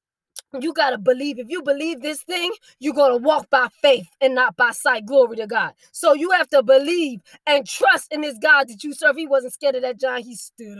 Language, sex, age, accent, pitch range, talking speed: English, female, 20-39, American, 260-325 Hz, 240 wpm